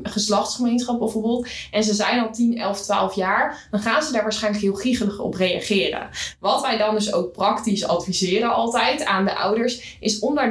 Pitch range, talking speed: 195-235 Hz, 190 wpm